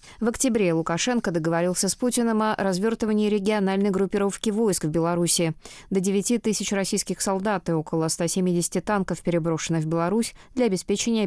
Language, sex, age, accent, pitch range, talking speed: Russian, female, 20-39, native, 165-215 Hz, 145 wpm